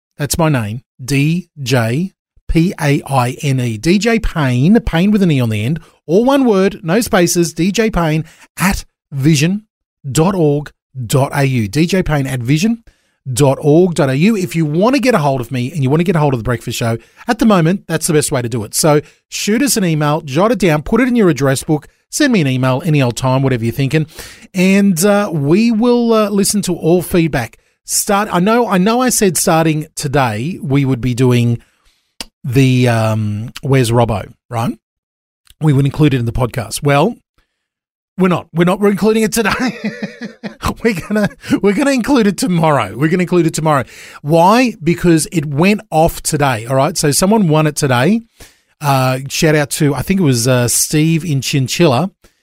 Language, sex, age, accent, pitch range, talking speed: English, male, 30-49, Australian, 135-195 Hz, 185 wpm